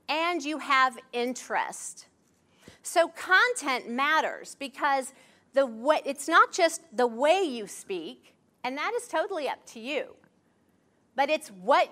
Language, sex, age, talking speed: English, female, 40-59, 125 wpm